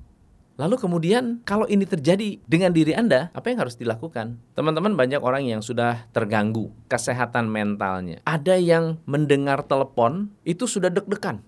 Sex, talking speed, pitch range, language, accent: male, 140 wpm, 115-170 Hz, Indonesian, native